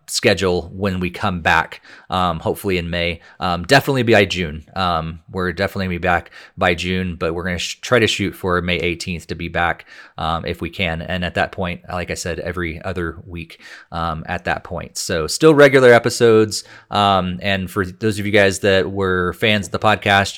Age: 30-49